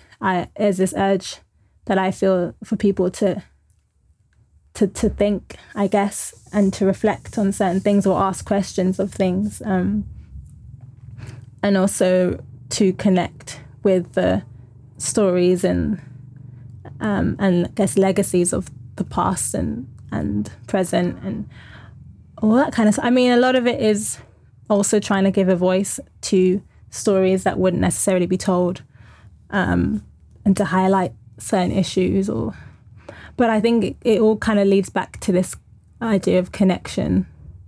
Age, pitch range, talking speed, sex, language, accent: 20-39, 170-205 Hz, 150 wpm, female, English, British